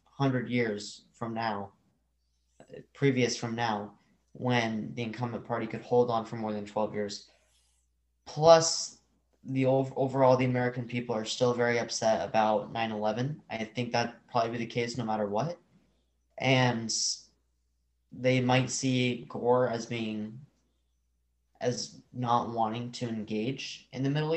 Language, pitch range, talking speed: English, 105-130 Hz, 145 wpm